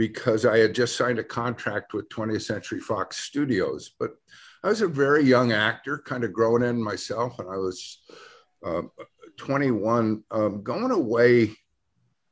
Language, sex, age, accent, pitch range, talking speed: English, male, 50-69, American, 100-125 Hz, 155 wpm